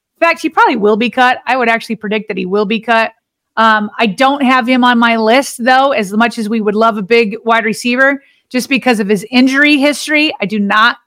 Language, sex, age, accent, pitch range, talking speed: English, female, 30-49, American, 220-260 Hz, 240 wpm